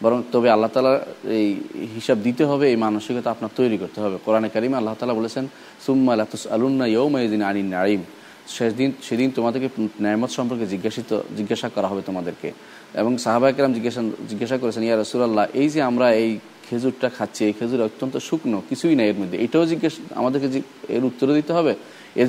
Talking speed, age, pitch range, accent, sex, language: 110 wpm, 30-49, 105-130 Hz, native, male, Bengali